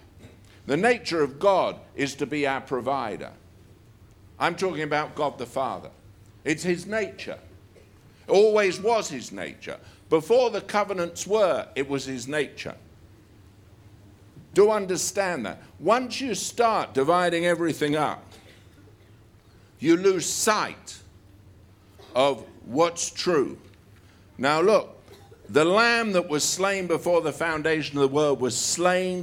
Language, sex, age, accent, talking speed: English, male, 60-79, British, 125 wpm